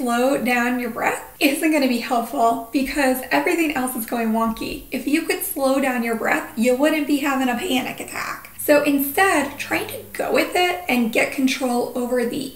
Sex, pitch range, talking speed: female, 245-310 Hz, 190 wpm